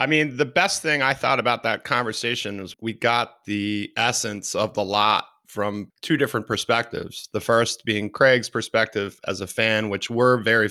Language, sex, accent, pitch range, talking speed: English, male, American, 105-130 Hz, 185 wpm